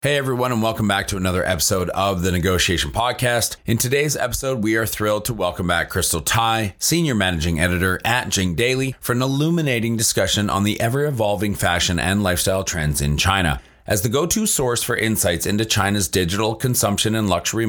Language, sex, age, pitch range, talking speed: English, male, 30-49, 90-115 Hz, 190 wpm